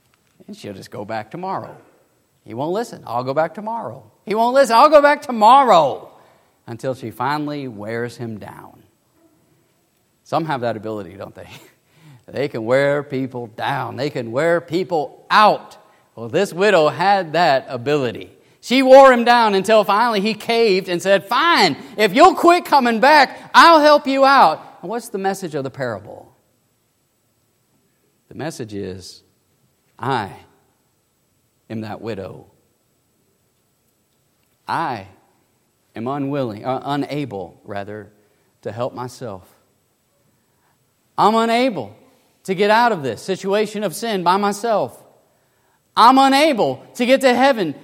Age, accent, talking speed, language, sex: 40-59, American, 135 wpm, English, male